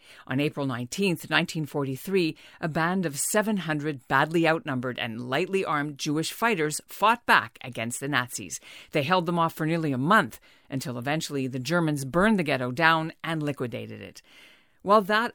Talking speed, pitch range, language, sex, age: 160 wpm, 140-185 Hz, English, female, 50-69